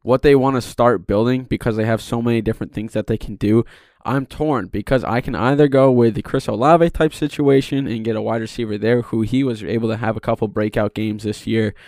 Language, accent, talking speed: English, American, 245 wpm